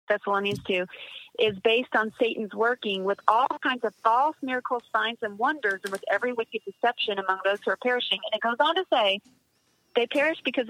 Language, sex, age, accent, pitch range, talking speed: English, female, 40-59, American, 205-255 Hz, 195 wpm